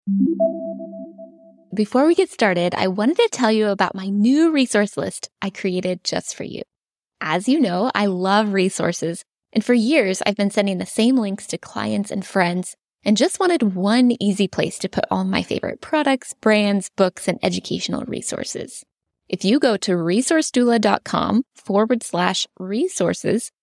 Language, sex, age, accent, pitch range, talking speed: English, female, 10-29, American, 185-245 Hz, 160 wpm